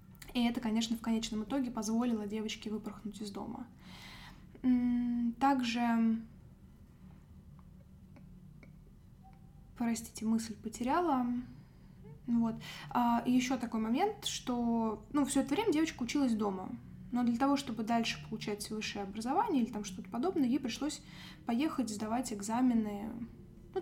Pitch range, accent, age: 215-250 Hz, native, 10-29